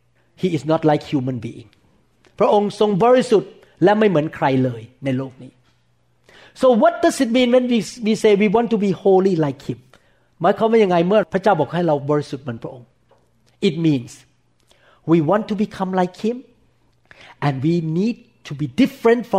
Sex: male